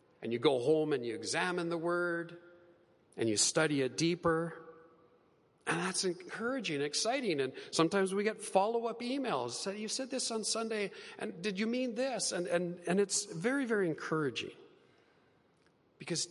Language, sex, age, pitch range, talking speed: English, male, 40-59, 155-245 Hz, 150 wpm